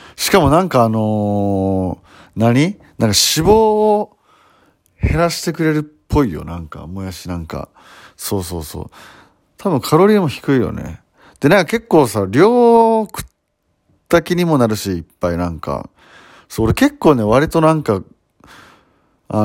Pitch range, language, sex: 95-150 Hz, Japanese, male